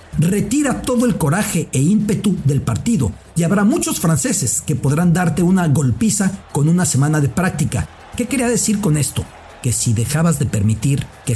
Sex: male